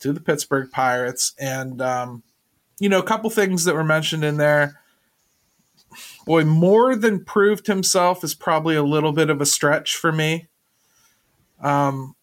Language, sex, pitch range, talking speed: English, male, 125-160 Hz, 155 wpm